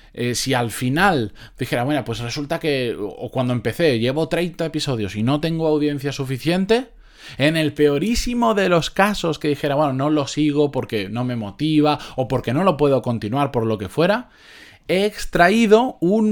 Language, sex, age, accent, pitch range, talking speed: Spanish, male, 20-39, Spanish, 110-155 Hz, 185 wpm